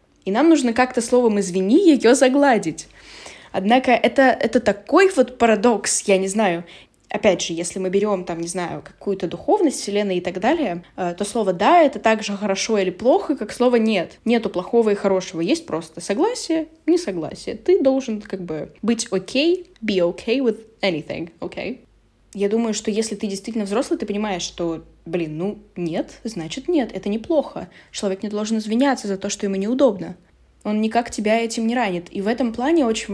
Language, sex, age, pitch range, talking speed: Russian, female, 10-29, 190-245 Hz, 185 wpm